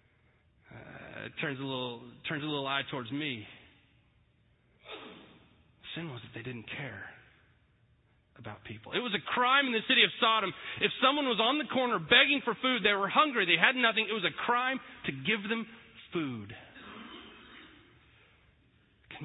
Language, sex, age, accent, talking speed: English, male, 40-59, American, 160 wpm